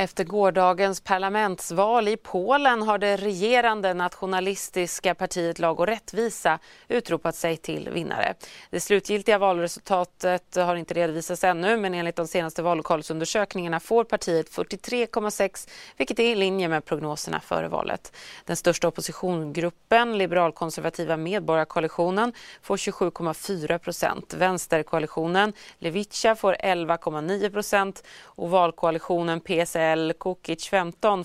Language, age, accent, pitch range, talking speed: Swedish, 30-49, native, 170-205 Hz, 110 wpm